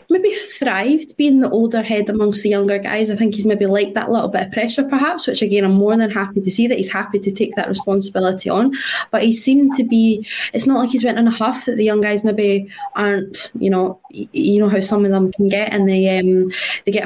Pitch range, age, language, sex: 195-235 Hz, 20-39, English, female